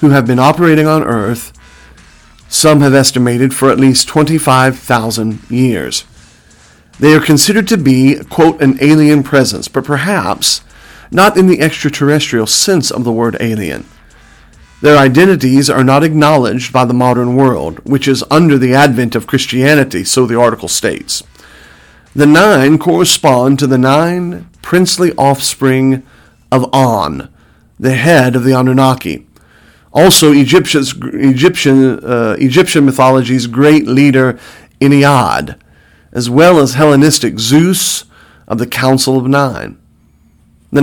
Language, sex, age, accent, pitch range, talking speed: English, male, 40-59, American, 125-150 Hz, 130 wpm